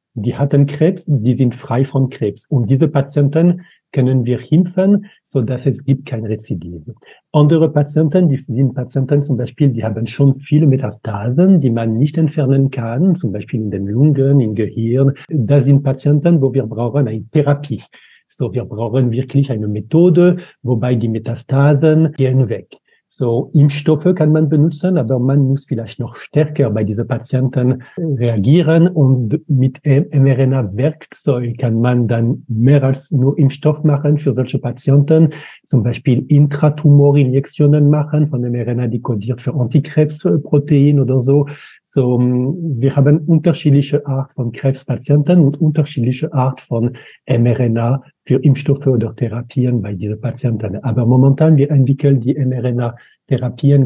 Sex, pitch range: male, 125-150 Hz